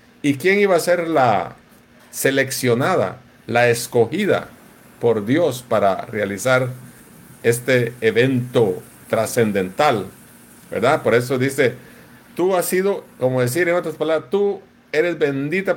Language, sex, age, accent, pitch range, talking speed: English, male, 50-69, Mexican, 110-140 Hz, 120 wpm